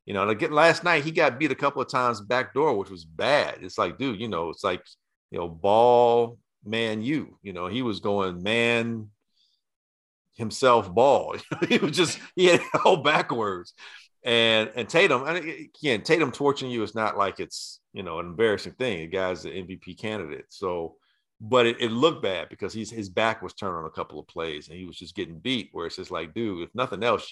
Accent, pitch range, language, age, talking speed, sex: American, 105-135 Hz, English, 50-69, 215 wpm, male